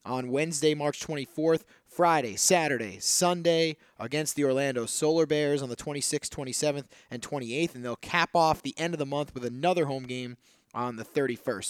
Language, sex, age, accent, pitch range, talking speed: English, male, 20-39, American, 130-160 Hz, 175 wpm